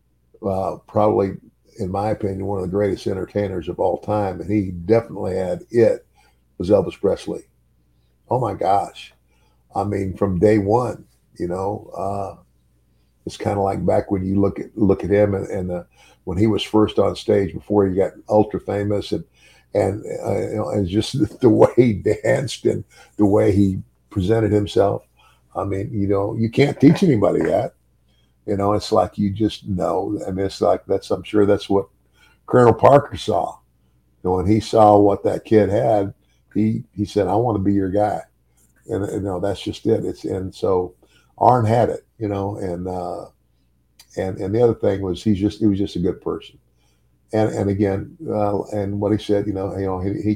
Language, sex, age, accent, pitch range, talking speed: English, male, 50-69, American, 90-105 Hz, 200 wpm